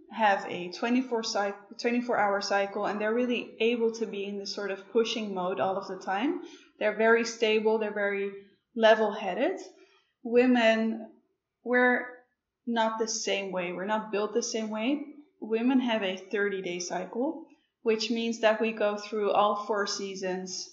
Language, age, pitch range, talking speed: English, 10-29, 200-245 Hz, 150 wpm